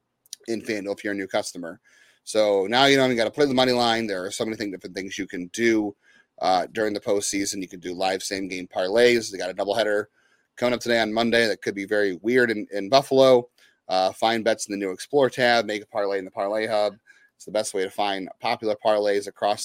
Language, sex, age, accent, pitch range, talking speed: English, male, 30-49, American, 100-125 Hz, 240 wpm